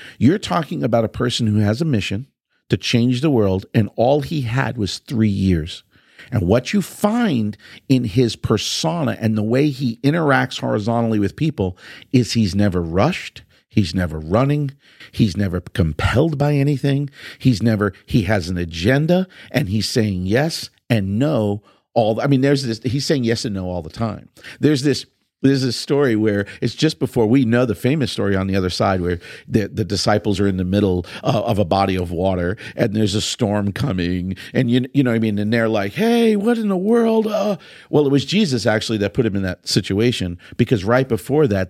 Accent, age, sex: American, 50-69, male